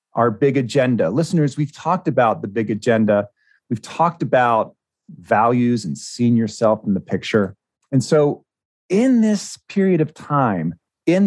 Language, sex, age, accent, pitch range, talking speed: English, male, 40-59, American, 110-155 Hz, 150 wpm